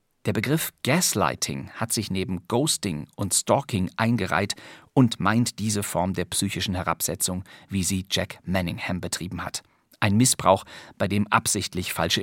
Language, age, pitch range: German, 50-69, 95-120 Hz